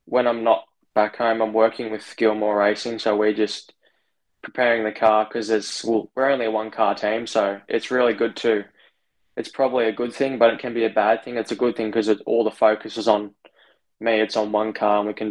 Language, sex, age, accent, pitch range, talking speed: English, male, 10-29, Australian, 110-115 Hz, 225 wpm